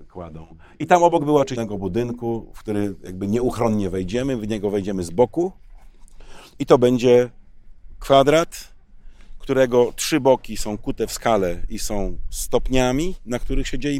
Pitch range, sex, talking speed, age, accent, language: 105-135 Hz, male, 145 wpm, 40-59, native, Polish